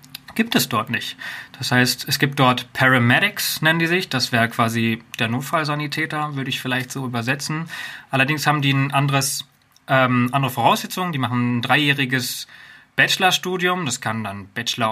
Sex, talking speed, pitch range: male, 155 wpm, 125-150 Hz